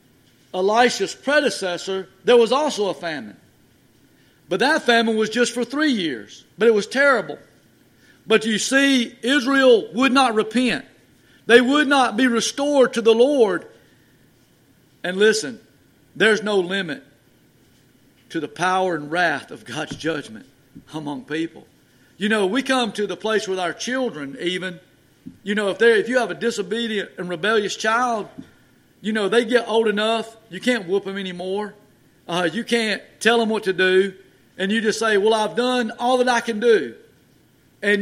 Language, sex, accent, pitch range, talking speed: English, male, American, 195-250 Hz, 165 wpm